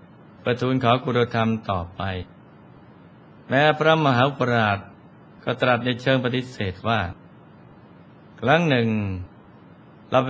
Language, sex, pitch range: Thai, male, 105-130 Hz